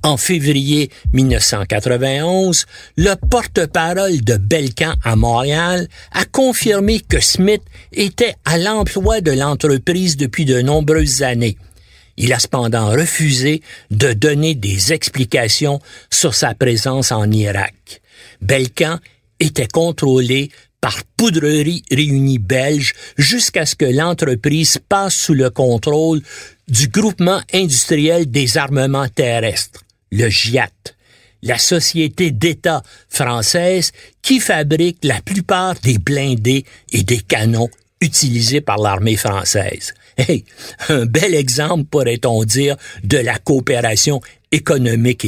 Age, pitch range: 60-79, 120-170 Hz